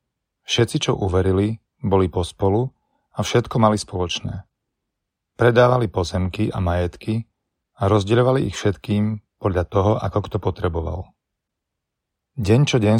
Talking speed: 120 wpm